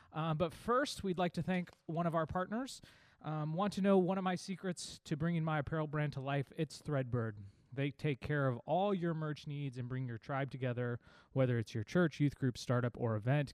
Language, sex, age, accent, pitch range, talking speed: English, male, 20-39, American, 120-150 Hz, 220 wpm